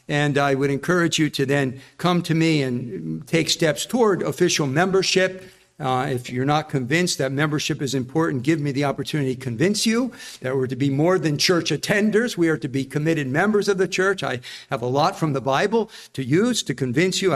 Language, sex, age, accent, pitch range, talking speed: English, male, 50-69, American, 155-205 Hz, 210 wpm